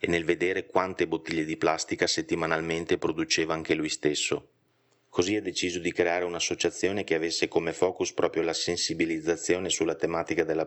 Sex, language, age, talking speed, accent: male, Italian, 30-49, 155 wpm, native